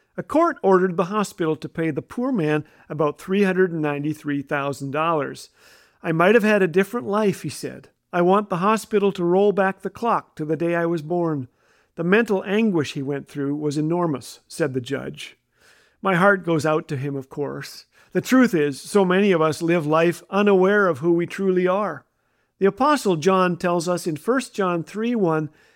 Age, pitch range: 50-69, 155-200 Hz